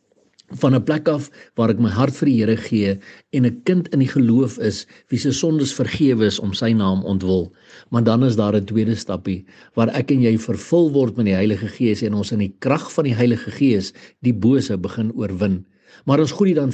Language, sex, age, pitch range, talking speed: English, male, 60-79, 105-130 Hz, 220 wpm